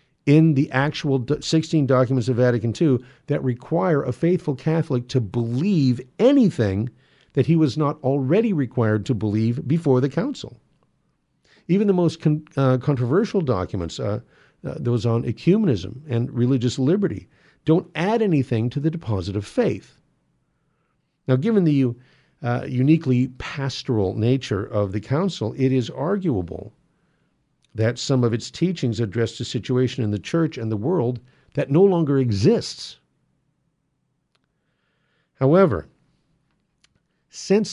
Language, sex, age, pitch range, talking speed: English, male, 50-69, 115-155 Hz, 130 wpm